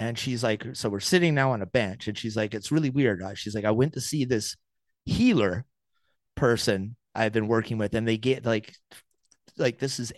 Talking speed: 210 wpm